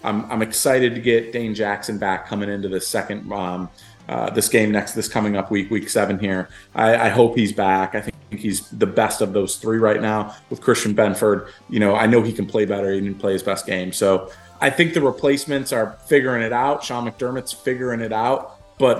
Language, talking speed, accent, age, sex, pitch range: English, 225 wpm, American, 30-49, male, 105-130 Hz